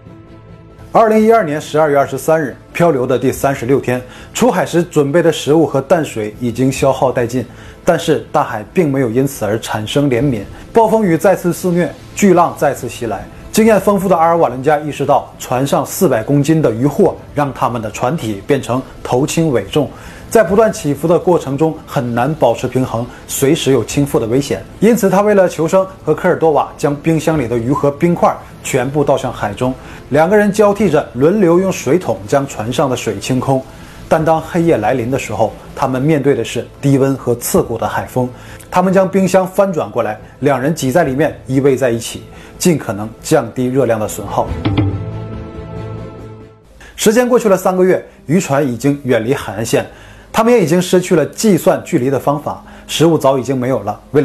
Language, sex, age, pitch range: Chinese, male, 20-39, 120-170 Hz